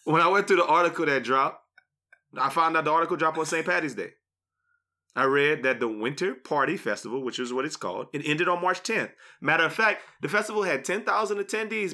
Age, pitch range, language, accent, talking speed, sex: 30-49, 160-230 Hz, English, American, 215 wpm, male